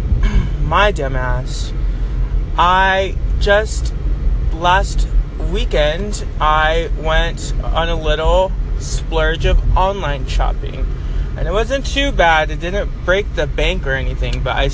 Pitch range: 105-170 Hz